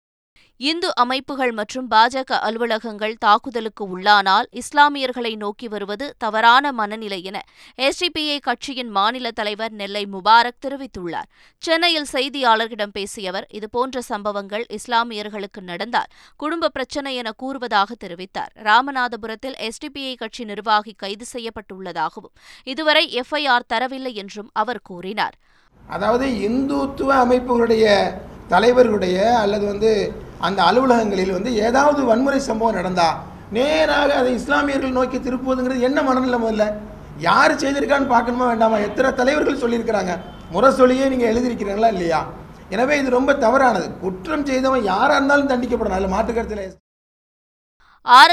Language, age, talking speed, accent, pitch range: Tamil, 20-39, 60 wpm, native, 210-260 Hz